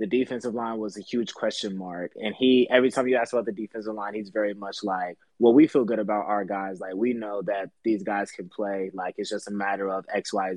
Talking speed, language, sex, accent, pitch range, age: 255 wpm, English, male, American, 100-120 Hz, 20-39